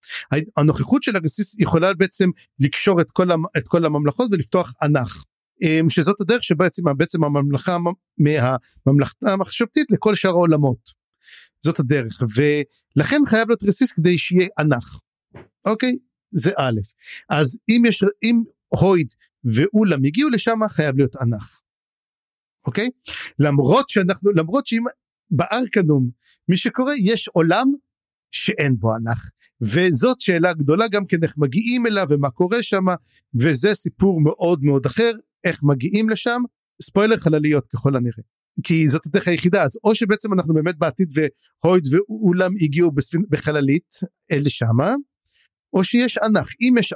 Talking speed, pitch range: 135 wpm, 145-205 Hz